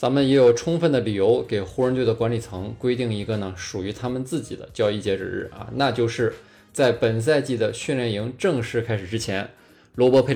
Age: 20-39